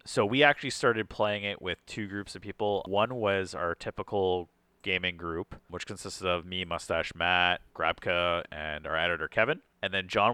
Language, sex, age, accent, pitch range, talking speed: English, male, 30-49, American, 90-120 Hz, 180 wpm